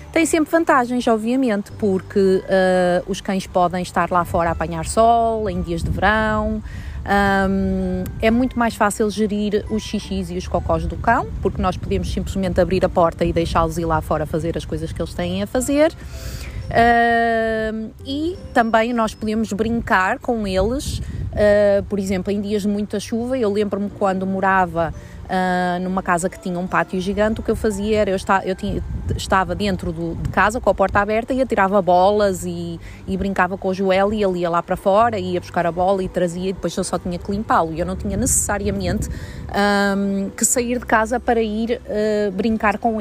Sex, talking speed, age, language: female, 195 wpm, 20-39, Portuguese